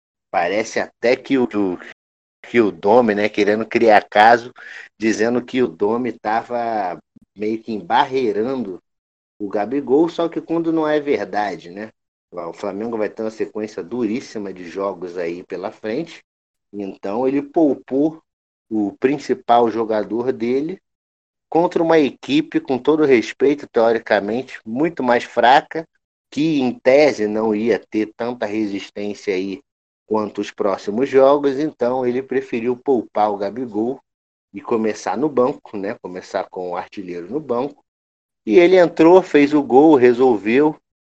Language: Portuguese